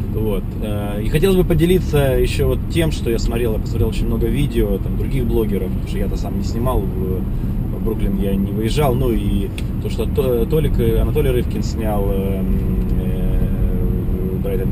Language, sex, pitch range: Russian, male, 100-120 Hz